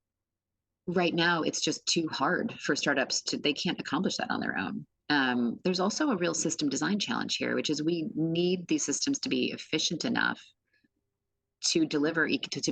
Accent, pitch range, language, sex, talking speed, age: American, 135-215 Hz, English, female, 190 wpm, 30-49